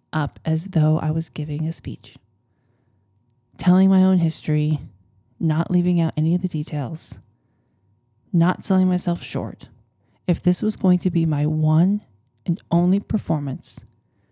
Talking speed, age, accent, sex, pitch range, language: 145 wpm, 20-39, American, male, 120-180 Hz, English